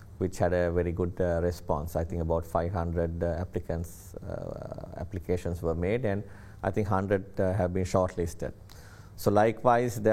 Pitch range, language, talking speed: 90-105 Hz, English, 165 wpm